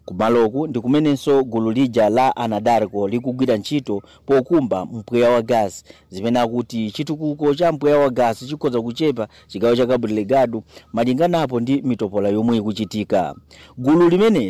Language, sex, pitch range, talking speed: English, male, 110-135 Hz, 130 wpm